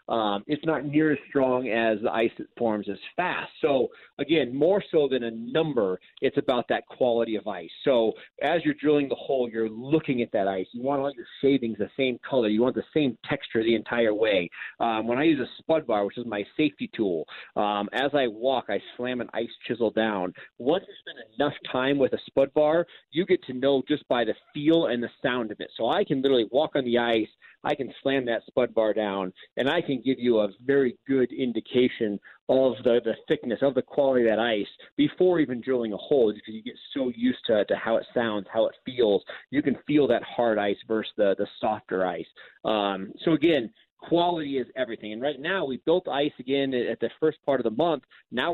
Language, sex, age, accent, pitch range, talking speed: English, male, 40-59, American, 115-145 Hz, 225 wpm